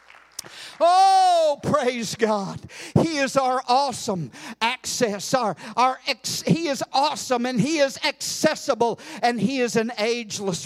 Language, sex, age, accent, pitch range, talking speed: English, male, 50-69, American, 260-335 Hz, 130 wpm